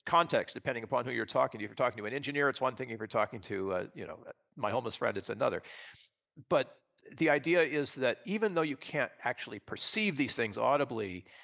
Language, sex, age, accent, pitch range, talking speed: English, male, 50-69, American, 120-155 Hz, 220 wpm